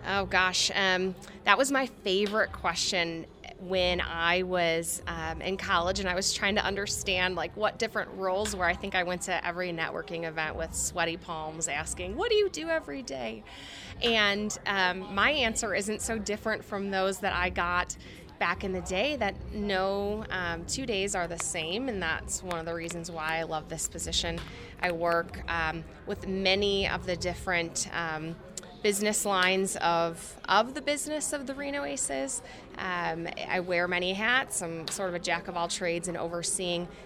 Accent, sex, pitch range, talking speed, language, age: American, female, 170-200 Hz, 180 wpm, English, 20-39